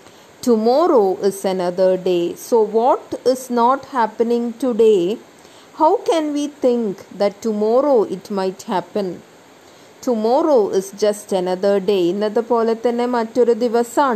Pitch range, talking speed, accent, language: 200-250 Hz, 105 wpm, Indian, English